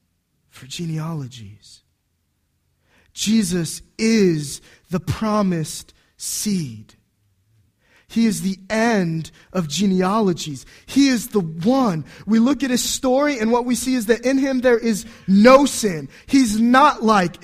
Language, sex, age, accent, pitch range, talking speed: English, male, 20-39, American, 165-240 Hz, 125 wpm